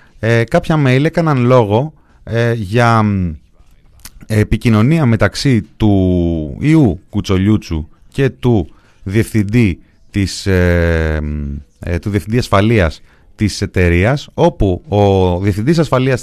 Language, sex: Greek, male